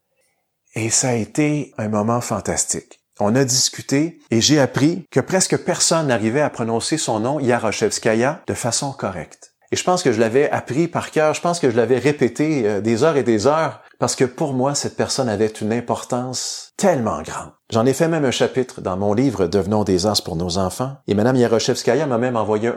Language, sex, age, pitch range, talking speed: French, male, 30-49, 110-145 Hz, 210 wpm